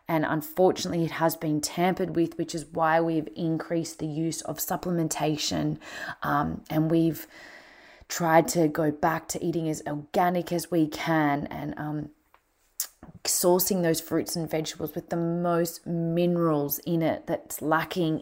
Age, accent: 20-39, Australian